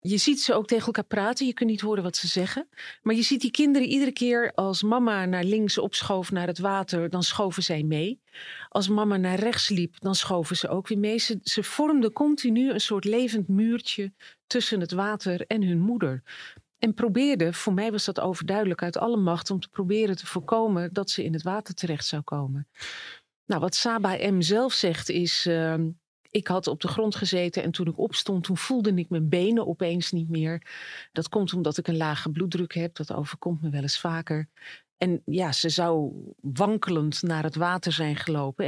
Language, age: Dutch, 40-59